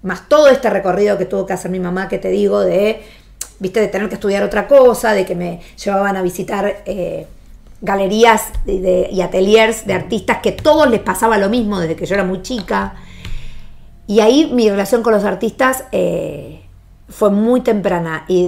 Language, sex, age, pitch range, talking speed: Spanish, female, 50-69, 190-225 Hz, 190 wpm